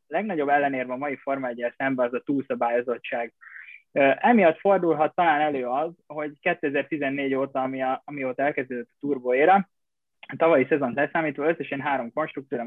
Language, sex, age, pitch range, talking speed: Hungarian, male, 20-39, 130-150 Hz, 145 wpm